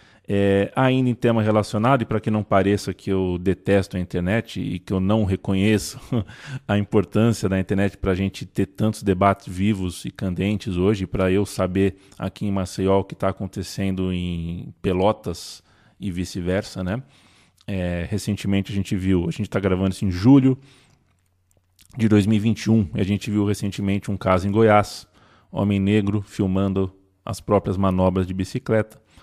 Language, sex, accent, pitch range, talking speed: Portuguese, male, Brazilian, 95-110 Hz, 160 wpm